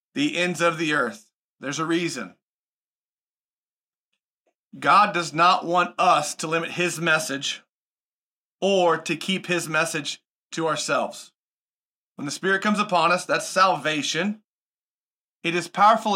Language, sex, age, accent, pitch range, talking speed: English, male, 30-49, American, 165-190 Hz, 130 wpm